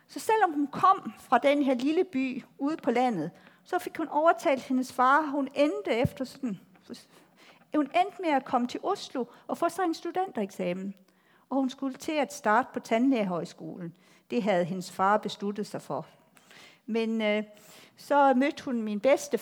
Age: 50-69